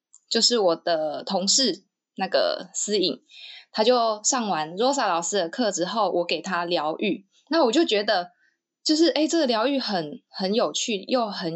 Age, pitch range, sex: 20-39, 185-265 Hz, female